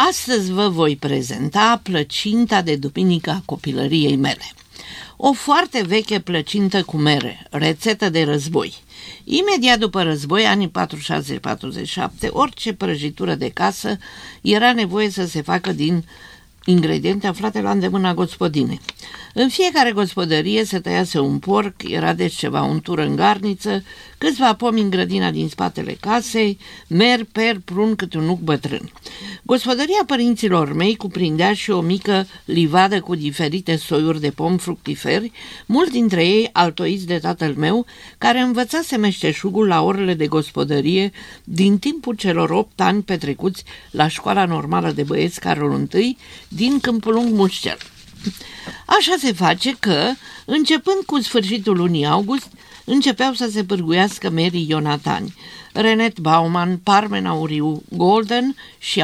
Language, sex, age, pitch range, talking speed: Romanian, female, 50-69, 160-225 Hz, 135 wpm